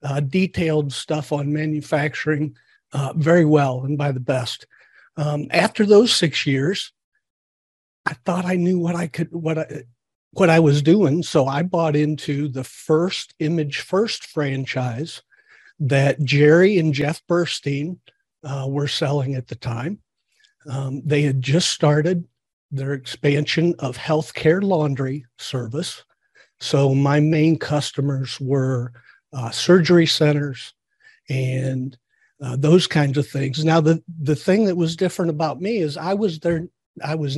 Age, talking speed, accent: 50-69, 145 wpm, American